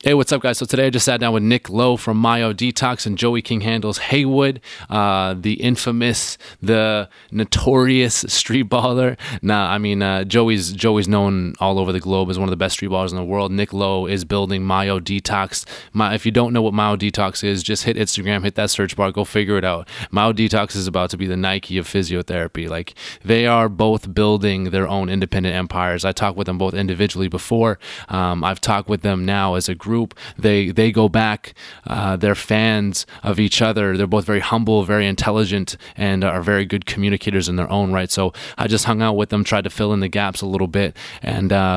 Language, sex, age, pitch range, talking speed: English, male, 20-39, 95-110 Hz, 220 wpm